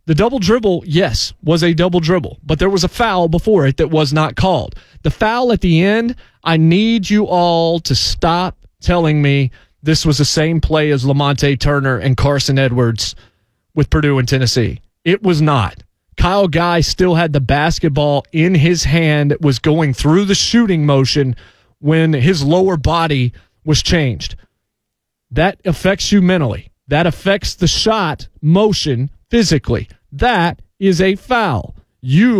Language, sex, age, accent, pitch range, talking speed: English, male, 30-49, American, 140-185 Hz, 160 wpm